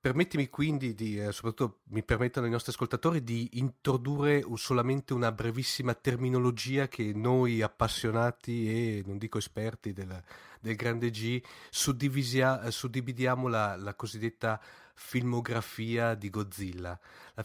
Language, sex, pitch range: Italian, male, 110-130 Hz